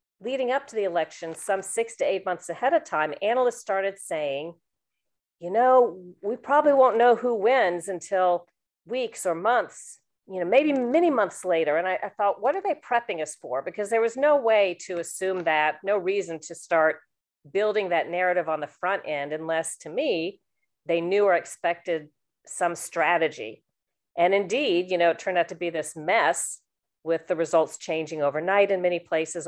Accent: American